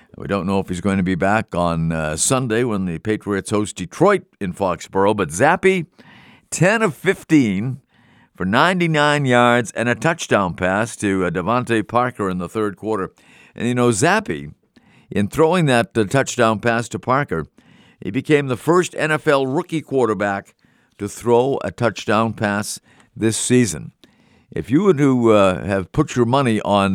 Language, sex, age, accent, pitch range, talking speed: English, male, 50-69, American, 100-135 Hz, 165 wpm